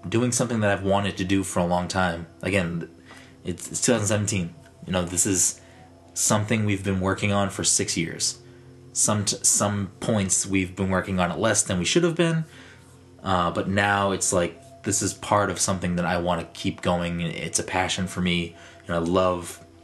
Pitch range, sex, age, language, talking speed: 90-105 Hz, male, 20-39, English, 200 wpm